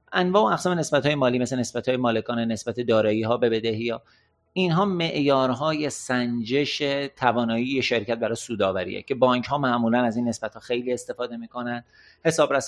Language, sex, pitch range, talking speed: Persian, male, 115-145 Hz, 165 wpm